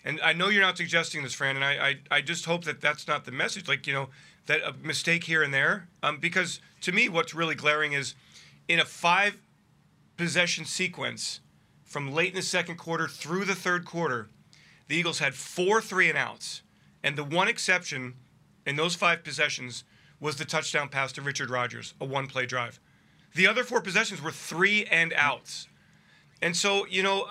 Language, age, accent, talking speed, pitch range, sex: English, 40-59, American, 180 wpm, 145-175 Hz, male